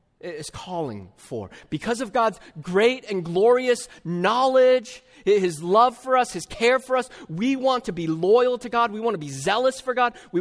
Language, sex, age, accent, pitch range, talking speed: English, male, 30-49, American, 110-175 Hz, 190 wpm